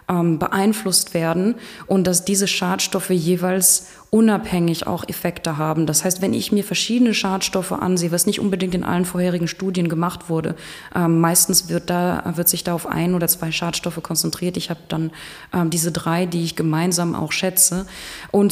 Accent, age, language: German, 20-39, German